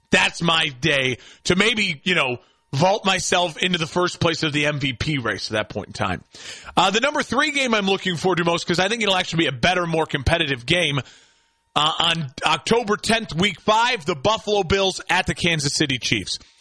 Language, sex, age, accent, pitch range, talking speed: English, male, 30-49, American, 170-235 Hz, 205 wpm